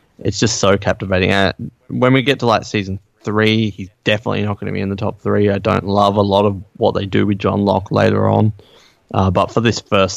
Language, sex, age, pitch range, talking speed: English, male, 20-39, 95-120 Hz, 240 wpm